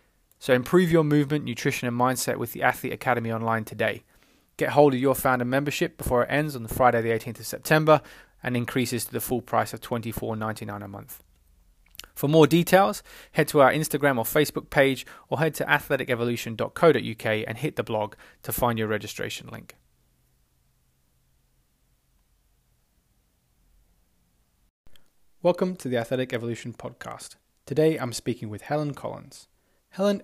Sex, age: male, 20-39